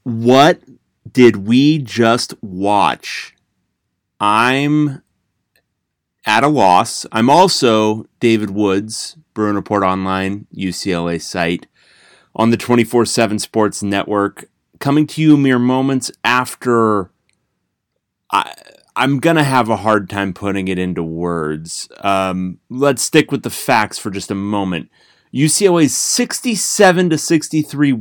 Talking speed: 115 wpm